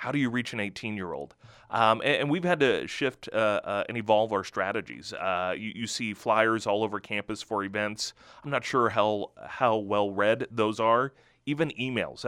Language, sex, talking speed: English, male, 190 wpm